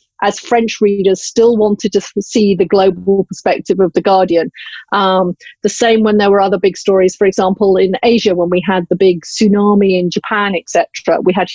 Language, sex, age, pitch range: Thai, female, 40-59, 185-215 Hz